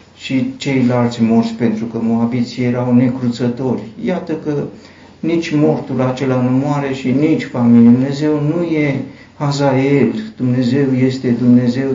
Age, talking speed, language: 60-79, 125 wpm, Romanian